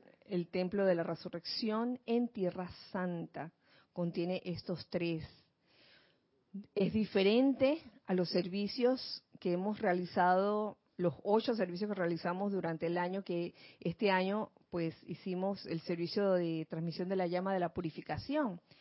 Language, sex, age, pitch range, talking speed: Spanish, female, 40-59, 175-220 Hz, 135 wpm